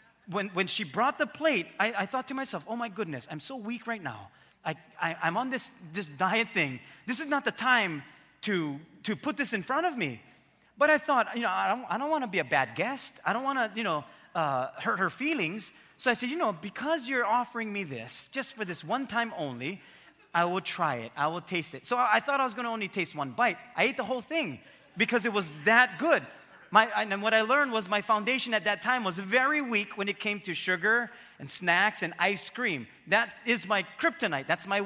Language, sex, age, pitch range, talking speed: English, male, 30-49, 175-255 Hz, 240 wpm